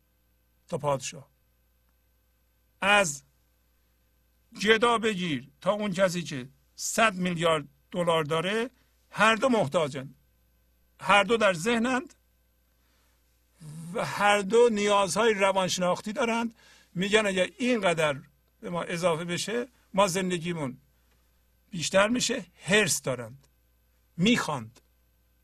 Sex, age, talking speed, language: male, 60-79, 95 wpm, Persian